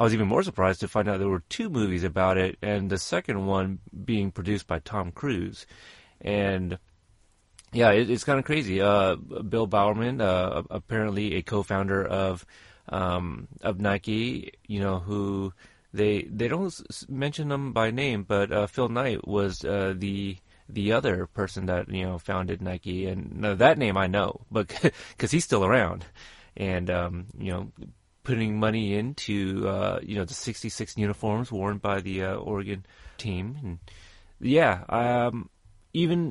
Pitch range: 95-120 Hz